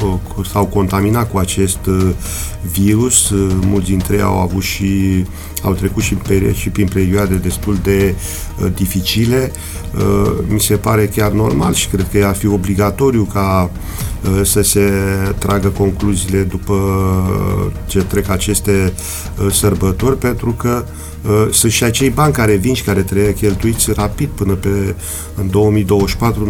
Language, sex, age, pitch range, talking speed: Romanian, male, 40-59, 95-105 Hz, 145 wpm